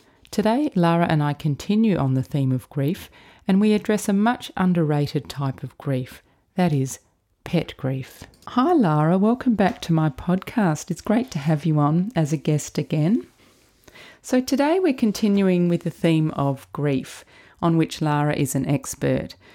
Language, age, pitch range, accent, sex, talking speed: English, 30-49, 140-180 Hz, Australian, female, 170 wpm